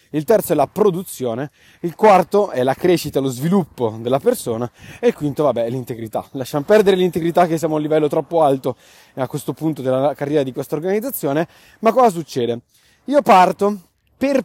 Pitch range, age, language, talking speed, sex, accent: 145-205 Hz, 30-49, Italian, 180 wpm, male, native